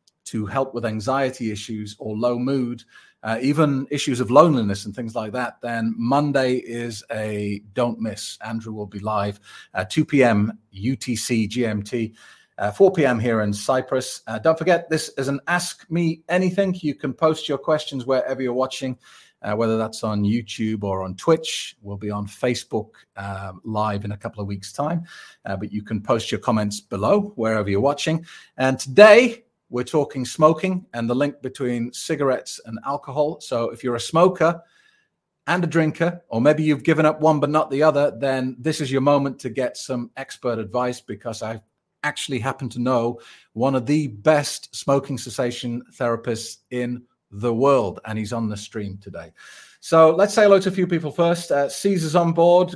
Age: 40-59